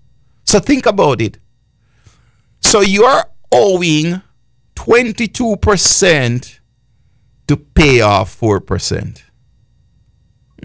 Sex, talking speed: male, 75 wpm